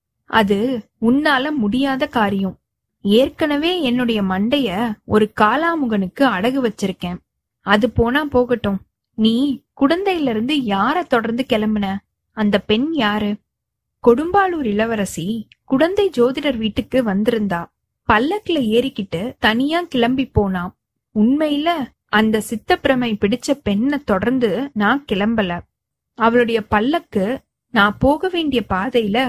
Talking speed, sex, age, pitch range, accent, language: 75 wpm, female, 20-39, 210-275 Hz, native, Tamil